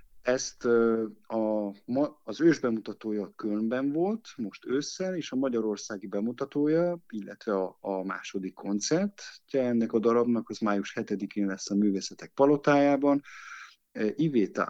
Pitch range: 100-125 Hz